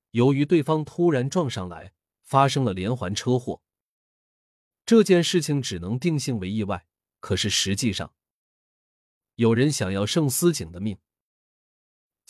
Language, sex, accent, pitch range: Chinese, male, native, 100-150 Hz